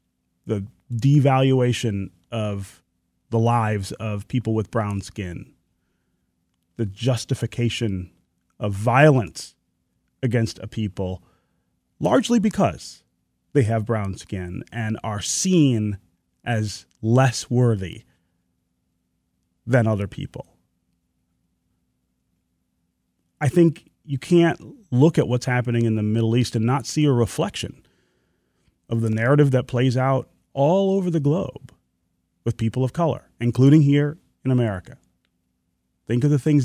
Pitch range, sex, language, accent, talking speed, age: 85-125 Hz, male, English, American, 115 wpm, 30-49